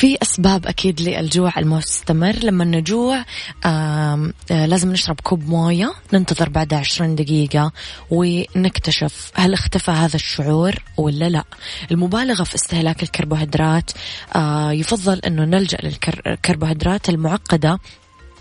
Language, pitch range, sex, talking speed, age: Arabic, 150-185 Hz, female, 105 wpm, 20-39